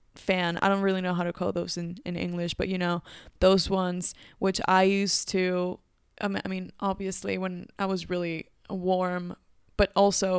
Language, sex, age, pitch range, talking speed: English, female, 20-39, 175-195 Hz, 180 wpm